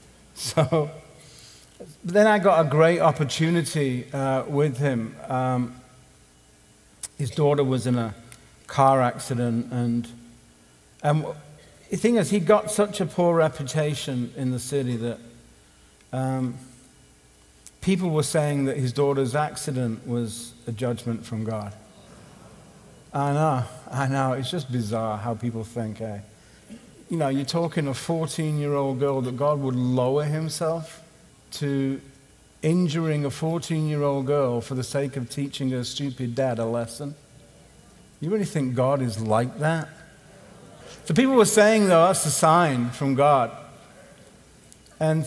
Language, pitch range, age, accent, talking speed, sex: English, 120-155 Hz, 50-69, British, 140 wpm, male